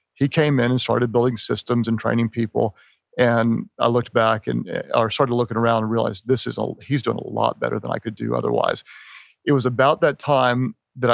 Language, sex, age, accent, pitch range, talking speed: English, male, 40-59, American, 115-130 Hz, 215 wpm